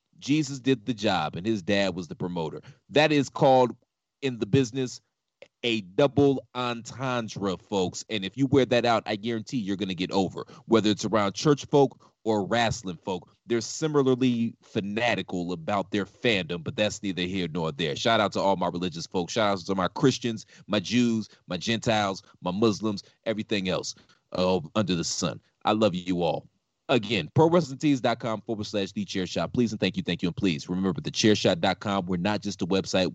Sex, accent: male, American